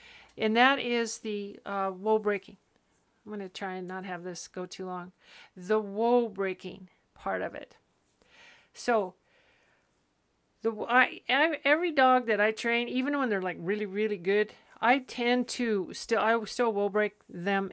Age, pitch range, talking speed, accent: 50-69, 205-250 Hz, 165 wpm, American